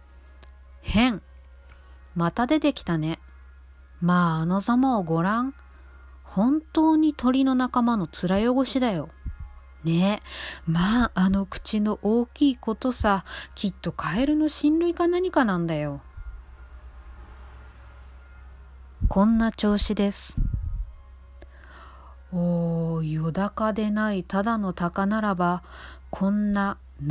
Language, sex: Japanese, female